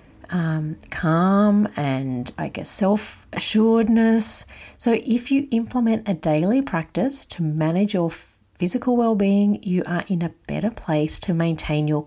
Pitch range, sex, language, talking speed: 165-225 Hz, female, English, 135 wpm